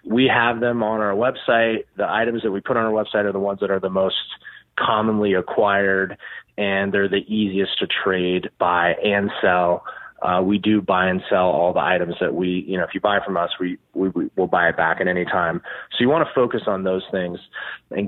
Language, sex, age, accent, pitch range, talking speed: English, male, 30-49, American, 95-115 Hz, 230 wpm